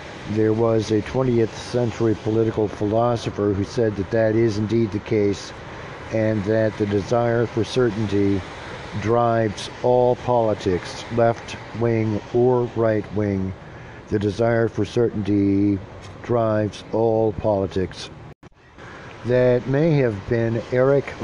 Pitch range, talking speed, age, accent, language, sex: 105-125 Hz, 115 wpm, 60-79, American, English, male